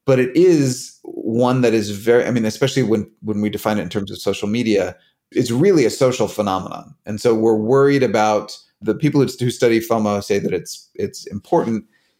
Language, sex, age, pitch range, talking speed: English, male, 30-49, 105-135 Hz, 200 wpm